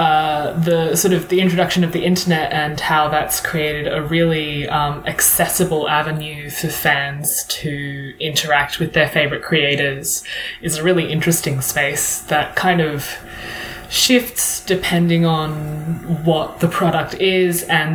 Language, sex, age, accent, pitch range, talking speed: English, female, 20-39, Australian, 145-175 Hz, 140 wpm